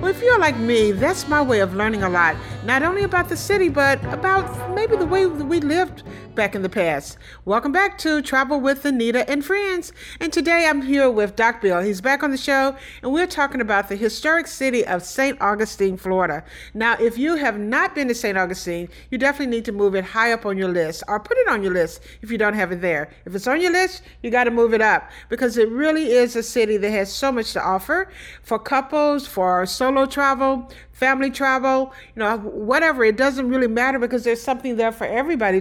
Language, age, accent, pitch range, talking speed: English, 50-69, American, 205-285 Hz, 230 wpm